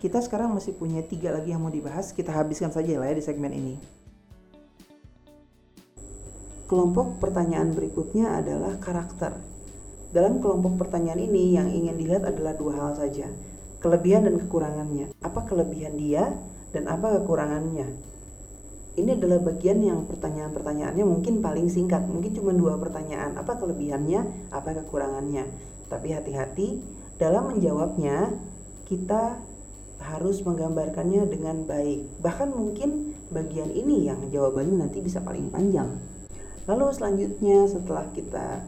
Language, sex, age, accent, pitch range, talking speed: Indonesian, female, 40-59, native, 145-185 Hz, 125 wpm